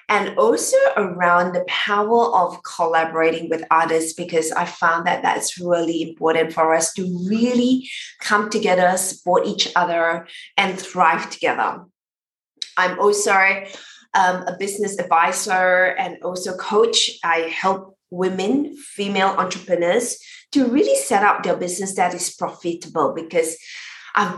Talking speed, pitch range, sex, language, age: 130 wpm, 170-200 Hz, female, English, 20-39